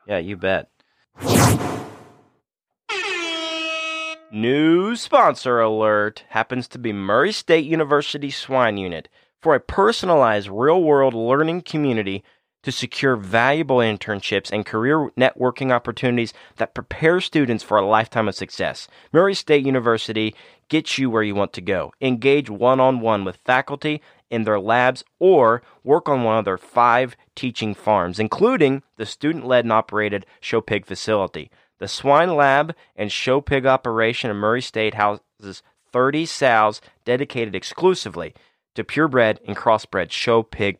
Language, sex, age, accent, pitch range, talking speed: English, male, 30-49, American, 110-145 Hz, 140 wpm